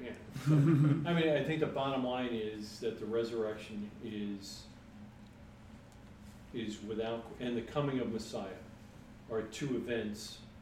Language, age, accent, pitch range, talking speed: English, 40-59, American, 105-130 Hz, 135 wpm